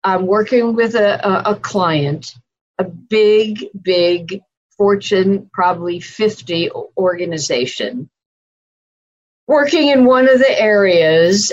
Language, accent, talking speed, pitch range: English, American, 100 wpm, 180-230 Hz